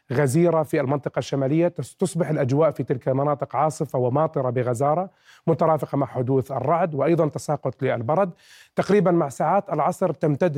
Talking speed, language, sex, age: 135 wpm, Arabic, male, 40-59